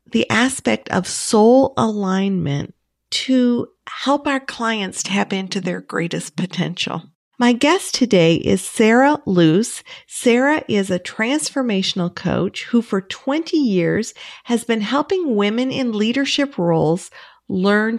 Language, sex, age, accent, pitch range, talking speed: English, female, 50-69, American, 180-250 Hz, 125 wpm